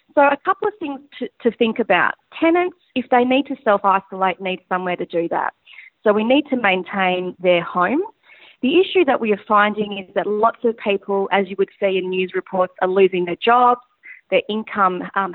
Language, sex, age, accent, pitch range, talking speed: English, female, 30-49, Australian, 185-230 Hz, 205 wpm